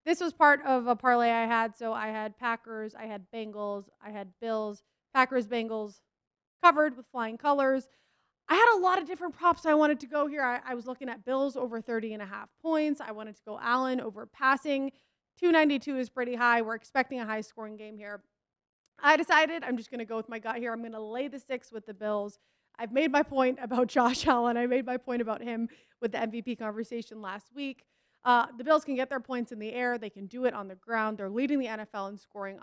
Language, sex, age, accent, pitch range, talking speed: English, female, 20-39, American, 220-275 Hz, 235 wpm